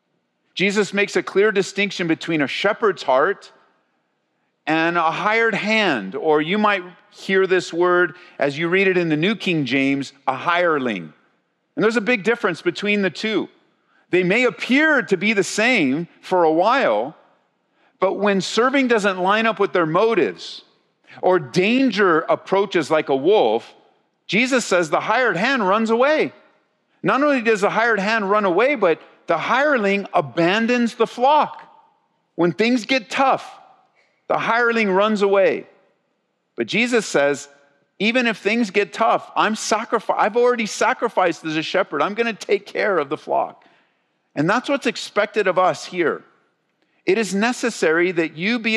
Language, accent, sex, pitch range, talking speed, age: English, American, male, 180-235 Hz, 160 wpm, 50-69